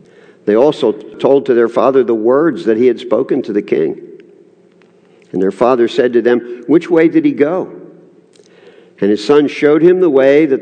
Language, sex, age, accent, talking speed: English, male, 50-69, American, 190 wpm